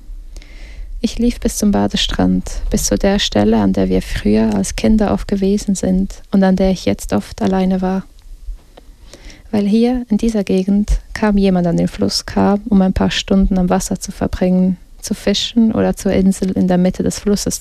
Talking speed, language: 185 wpm, English